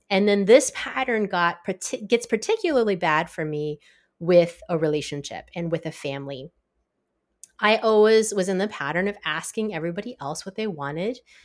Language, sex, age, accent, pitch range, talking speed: English, female, 30-49, American, 165-225 Hz, 155 wpm